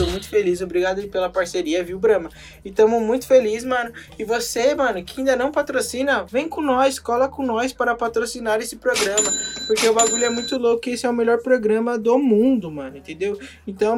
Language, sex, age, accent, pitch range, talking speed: Portuguese, male, 20-39, Brazilian, 195-255 Hz, 195 wpm